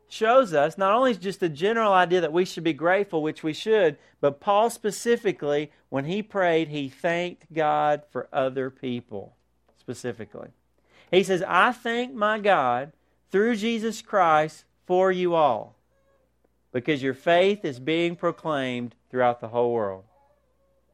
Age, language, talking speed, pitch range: 40-59, English, 145 wpm, 120-190 Hz